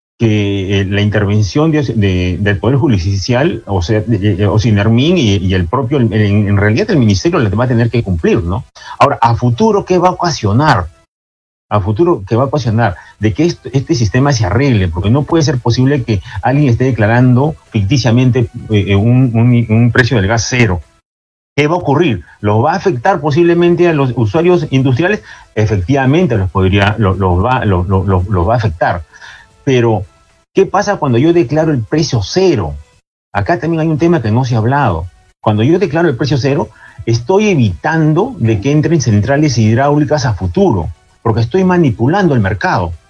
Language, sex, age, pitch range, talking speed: Spanish, male, 40-59, 105-150 Hz, 185 wpm